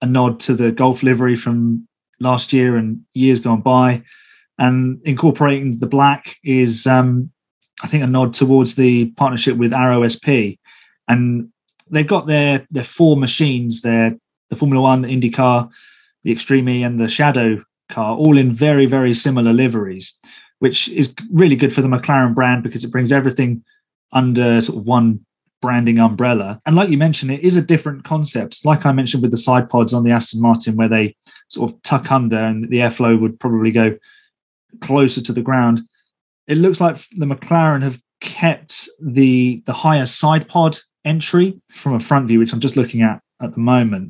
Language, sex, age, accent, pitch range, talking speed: English, male, 20-39, British, 120-140 Hz, 180 wpm